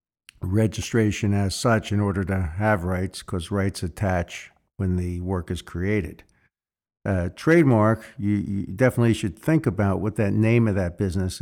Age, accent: 50-69, American